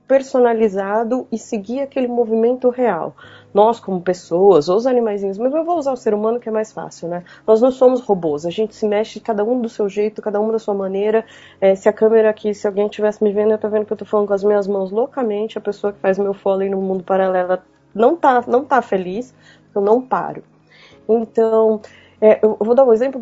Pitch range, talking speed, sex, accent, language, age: 190-240 Hz, 230 wpm, female, Brazilian, Portuguese, 20-39